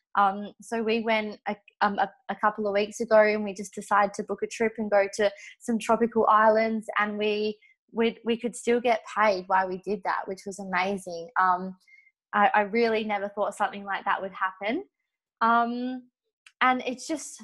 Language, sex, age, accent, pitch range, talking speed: English, female, 20-39, Australian, 195-220 Hz, 190 wpm